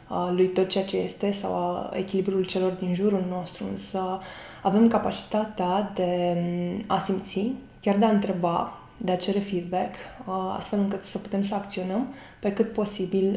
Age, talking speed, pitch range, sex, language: 20-39, 155 wpm, 185-210 Hz, female, Romanian